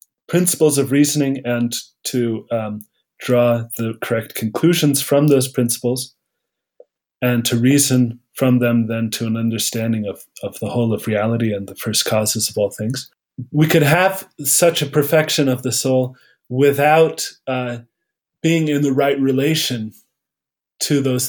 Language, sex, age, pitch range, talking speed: English, male, 30-49, 115-140 Hz, 150 wpm